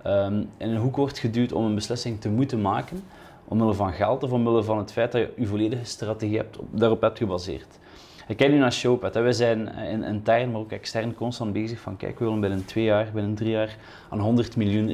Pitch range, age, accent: 105-120 Hz, 20-39, Dutch